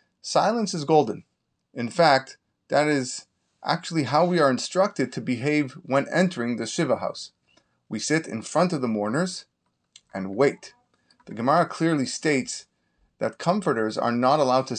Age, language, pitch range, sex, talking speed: 30-49, English, 125-160 Hz, male, 155 wpm